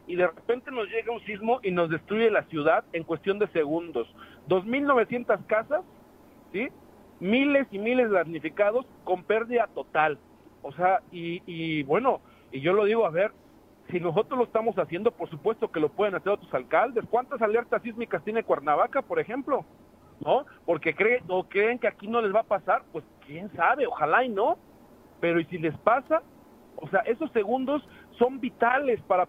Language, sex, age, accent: Spanish, male, 40-59, Mexican